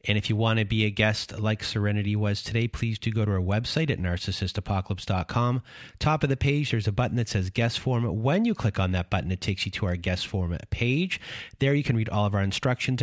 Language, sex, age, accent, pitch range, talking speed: English, male, 30-49, American, 100-125 Hz, 245 wpm